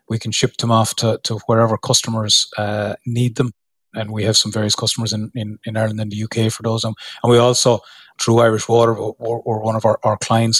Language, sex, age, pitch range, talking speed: English, male, 30-49, 110-125 Hz, 225 wpm